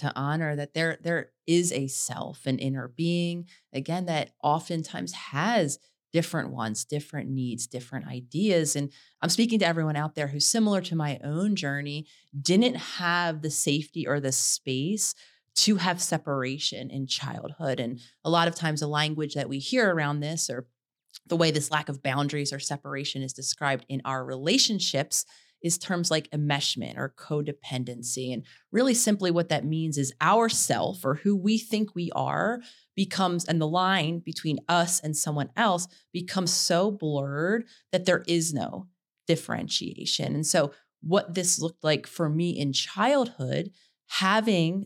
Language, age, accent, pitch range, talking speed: English, 30-49, American, 145-180 Hz, 160 wpm